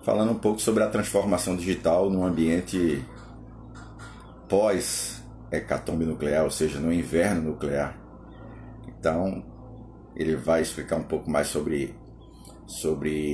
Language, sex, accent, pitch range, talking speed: Portuguese, male, Brazilian, 80-110 Hz, 110 wpm